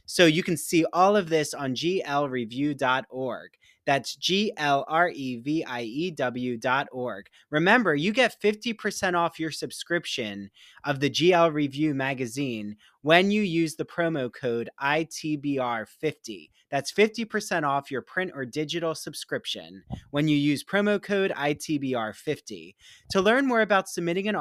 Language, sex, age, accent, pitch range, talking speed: English, male, 20-39, American, 135-185 Hz, 125 wpm